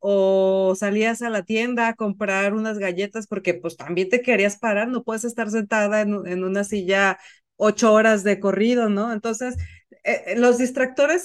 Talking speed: 170 wpm